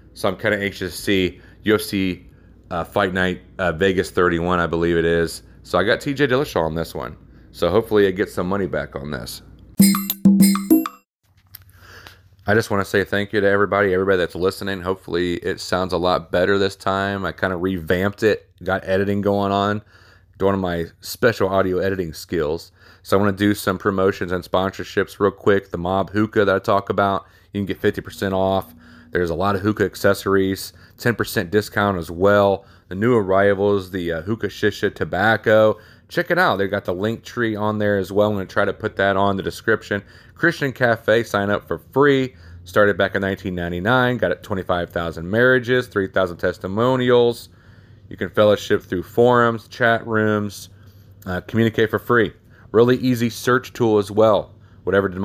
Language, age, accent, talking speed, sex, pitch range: English, 30-49, American, 185 wpm, male, 95-105 Hz